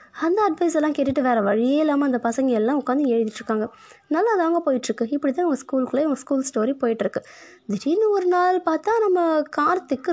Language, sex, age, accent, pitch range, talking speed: Tamil, female, 20-39, native, 245-330 Hz, 170 wpm